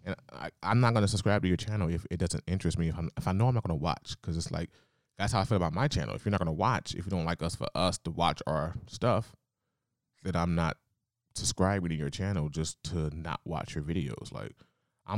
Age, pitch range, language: 20-39, 80-105 Hz, English